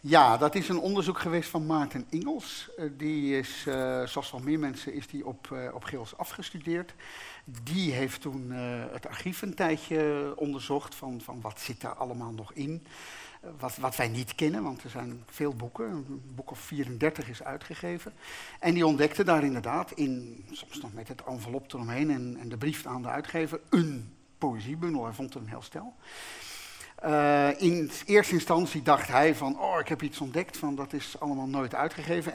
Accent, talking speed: Dutch, 180 wpm